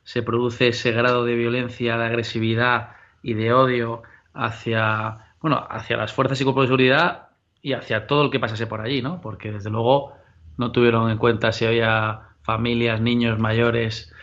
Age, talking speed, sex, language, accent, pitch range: 20-39, 170 wpm, male, Spanish, Spanish, 115-130 Hz